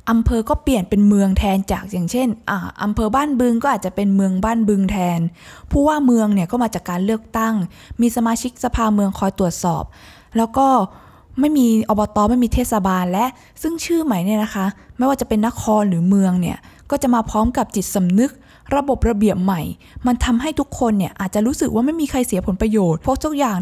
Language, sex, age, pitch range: Thai, female, 20-39, 195-245 Hz